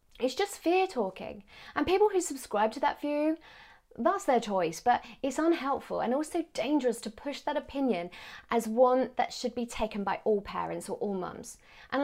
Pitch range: 220-315 Hz